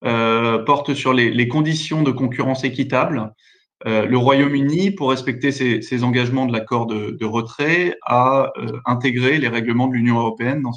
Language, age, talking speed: French, 20-39, 175 wpm